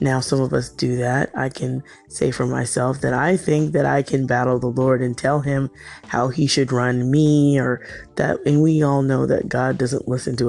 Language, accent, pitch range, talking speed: English, American, 130-175 Hz, 225 wpm